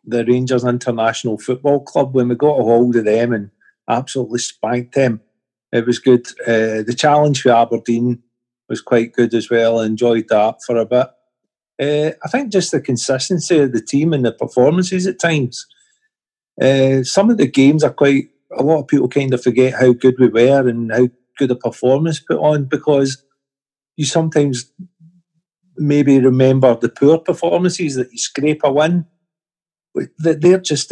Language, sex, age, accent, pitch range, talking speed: English, male, 40-59, British, 120-150 Hz, 175 wpm